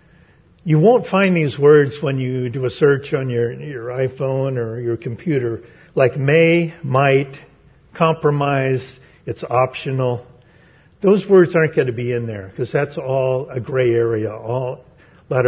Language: English